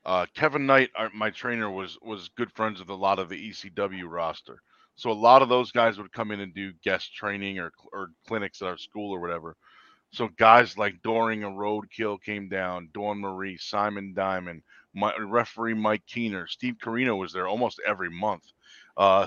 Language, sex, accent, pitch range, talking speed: English, male, American, 100-125 Hz, 185 wpm